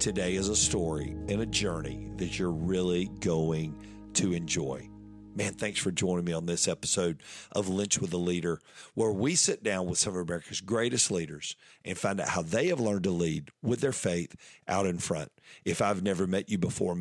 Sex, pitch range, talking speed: male, 90-115 Hz, 200 wpm